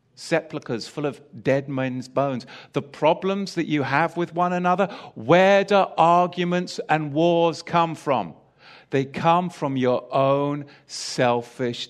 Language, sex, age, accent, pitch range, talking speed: English, male, 50-69, British, 130-175 Hz, 135 wpm